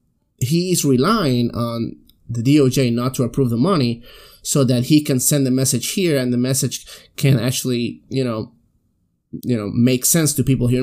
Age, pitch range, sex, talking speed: 30-49, 120-160 Hz, male, 185 wpm